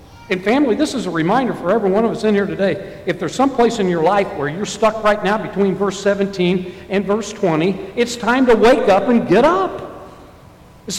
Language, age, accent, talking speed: English, 60-79, American, 225 wpm